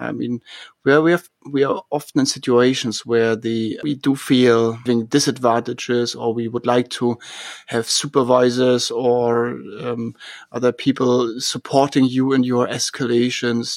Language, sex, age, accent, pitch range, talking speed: English, male, 30-49, German, 120-135 Hz, 140 wpm